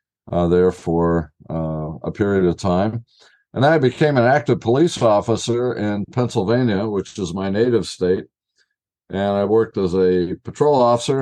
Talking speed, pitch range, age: 155 wpm, 95-115 Hz, 60-79